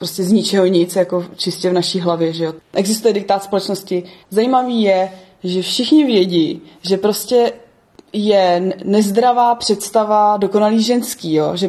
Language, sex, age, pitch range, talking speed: Czech, female, 20-39, 185-220 Hz, 145 wpm